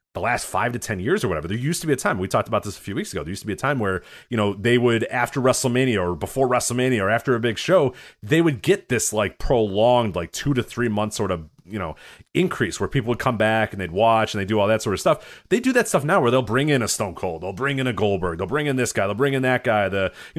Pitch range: 105-145 Hz